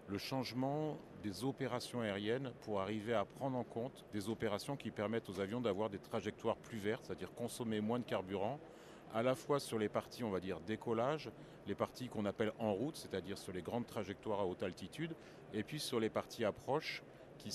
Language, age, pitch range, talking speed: French, 40-59, 105-125 Hz, 200 wpm